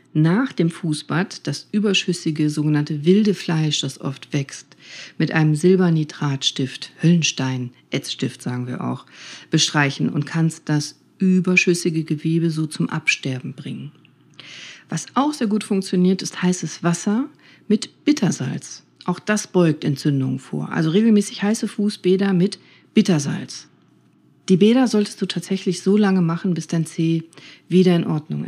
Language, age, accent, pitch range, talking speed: German, 40-59, German, 150-185 Hz, 135 wpm